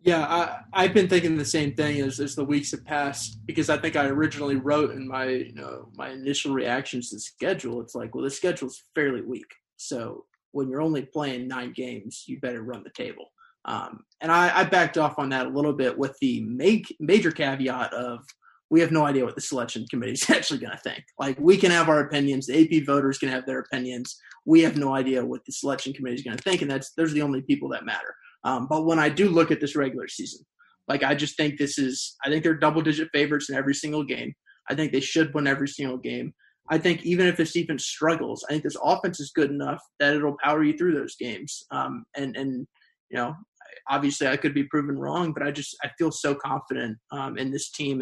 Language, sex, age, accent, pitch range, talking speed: English, male, 20-39, American, 135-160 Hz, 235 wpm